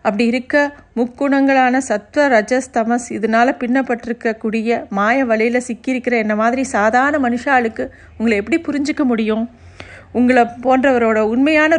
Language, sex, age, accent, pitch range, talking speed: Tamil, female, 50-69, native, 215-260 Hz, 105 wpm